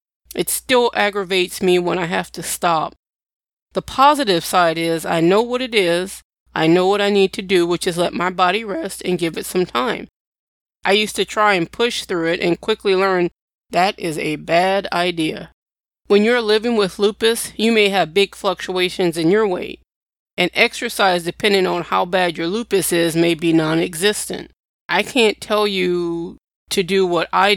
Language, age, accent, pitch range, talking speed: English, 20-39, American, 175-205 Hz, 185 wpm